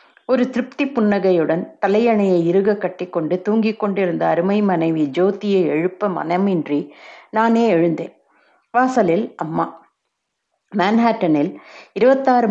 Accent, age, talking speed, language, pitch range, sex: native, 60-79, 95 wpm, Tamil, 180-230 Hz, female